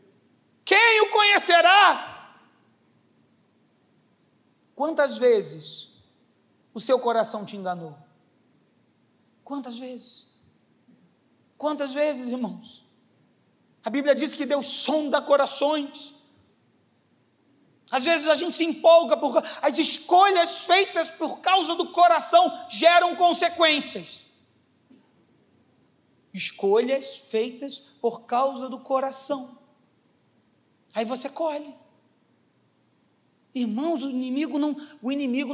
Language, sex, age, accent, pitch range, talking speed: Portuguese, male, 40-59, Brazilian, 260-310 Hz, 85 wpm